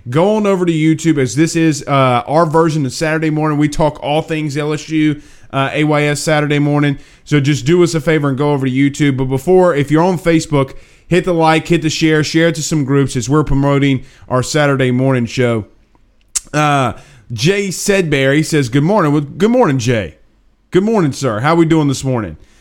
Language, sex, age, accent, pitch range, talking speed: English, male, 30-49, American, 130-165 Hz, 200 wpm